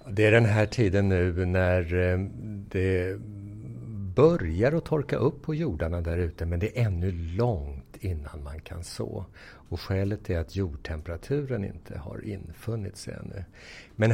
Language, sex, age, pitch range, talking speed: English, male, 60-79, 90-120 Hz, 155 wpm